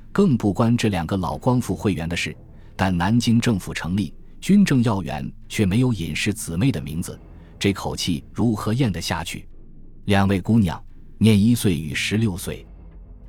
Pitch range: 90-120 Hz